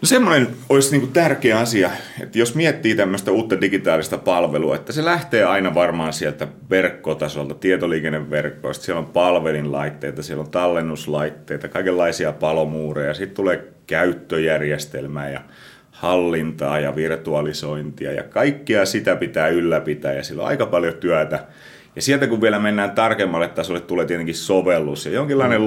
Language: Finnish